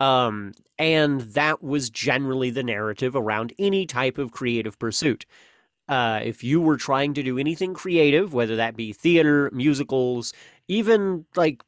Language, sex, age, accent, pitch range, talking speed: English, male, 30-49, American, 120-145 Hz, 150 wpm